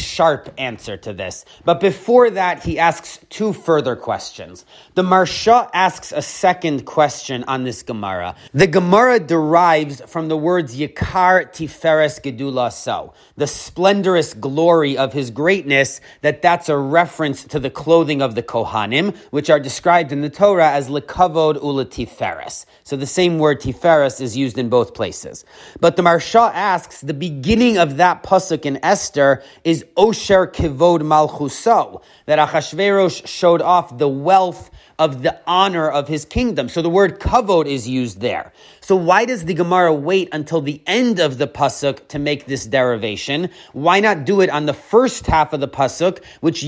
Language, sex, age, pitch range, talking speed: English, male, 30-49, 140-180 Hz, 160 wpm